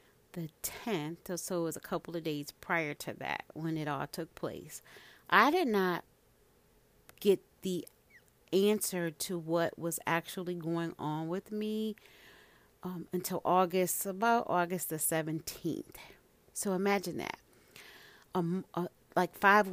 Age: 40-59